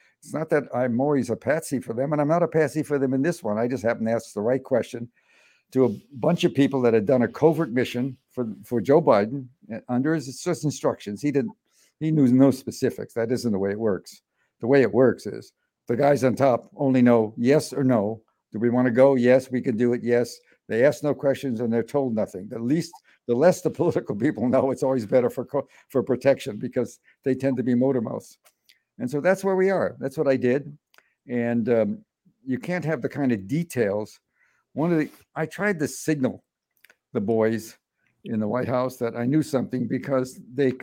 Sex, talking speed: male, 220 wpm